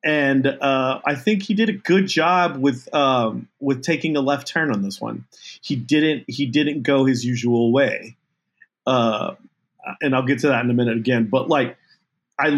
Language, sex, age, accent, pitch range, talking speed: English, male, 30-49, American, 125-165 Hz, 190 wpm